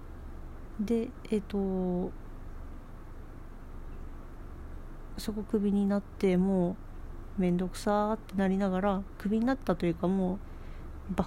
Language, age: Japanese, 40-59